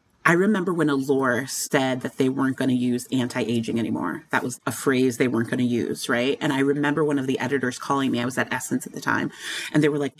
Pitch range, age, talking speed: 140-165 Hz, 30-49, 255 wpm